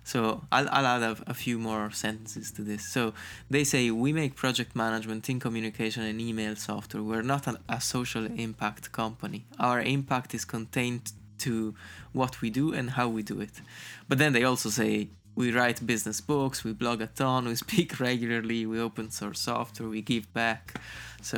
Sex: male